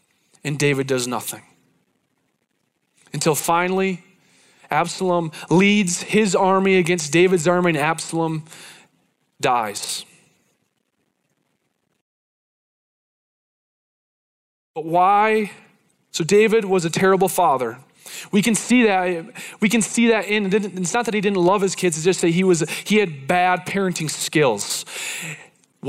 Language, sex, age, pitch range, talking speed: English, male, 20-39, 165-200 Hz, 120 wpm